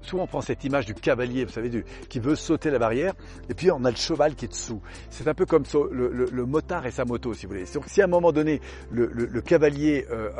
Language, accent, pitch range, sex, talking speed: French, French, 115-155 Hz, male, 285 wpm